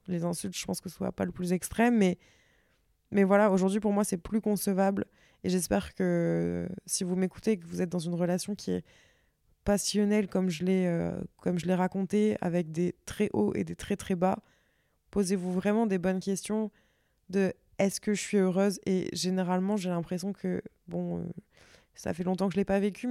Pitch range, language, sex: 180-210 Hz, French, female